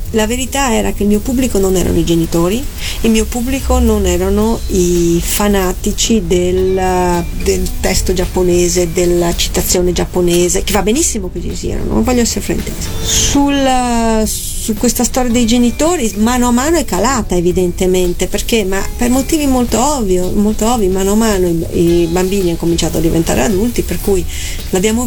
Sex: female